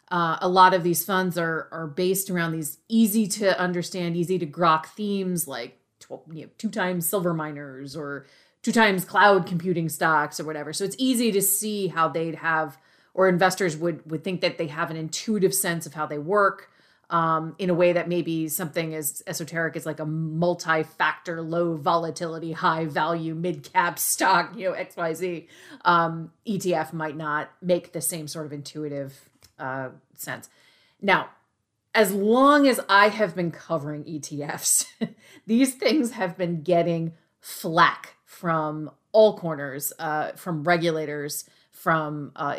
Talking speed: 165 wpm